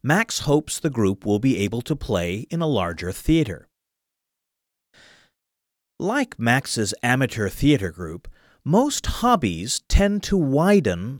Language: Japanese